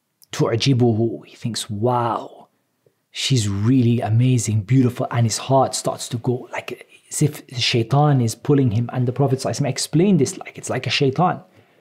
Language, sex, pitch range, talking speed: English, male, 120-150 Hz, 170 wpm